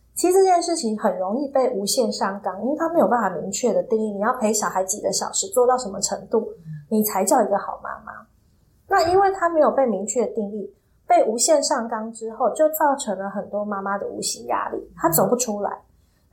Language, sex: Chinese, female